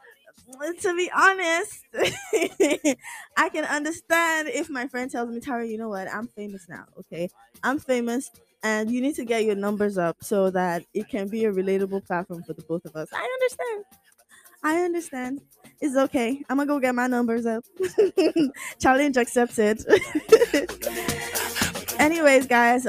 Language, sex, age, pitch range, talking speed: English, female, 20-39, 195-270 Hz, 155 wpm